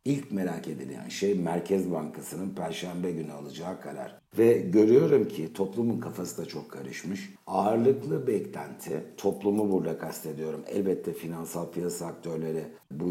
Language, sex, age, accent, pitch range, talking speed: Turkish, male, 60-79, native, 80-110 Hz, 130 wpm